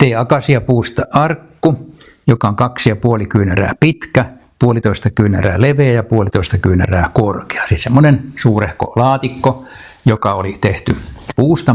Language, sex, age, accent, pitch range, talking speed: Finnish, male, 60-79, native, 95-125 Hz, 125 wpm